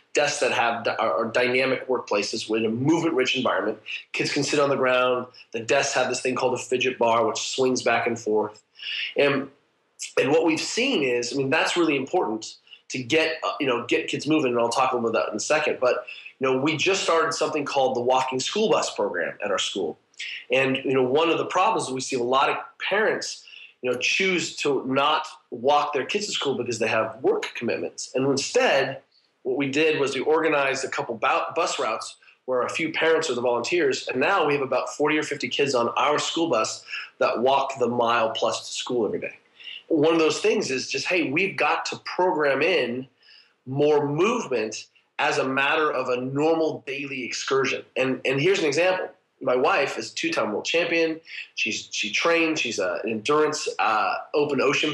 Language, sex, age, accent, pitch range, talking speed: English, male, 30-49, American, 125-165 Hz, 205 wpm